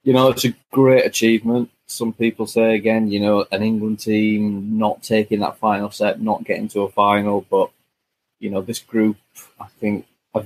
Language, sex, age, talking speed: English, male, 20-39, 190 wpm